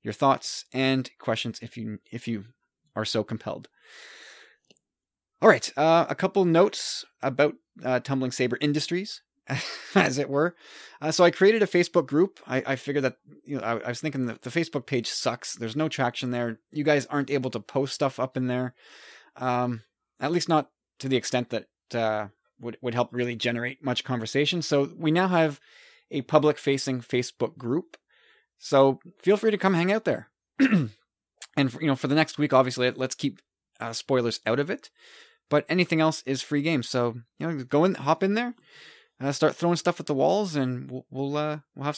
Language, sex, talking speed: English, male, 195 wpm